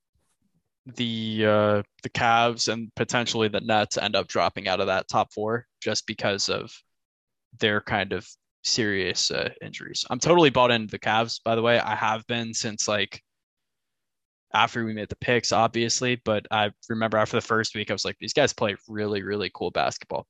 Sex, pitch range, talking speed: male, 105-120 Hz, 185 wpm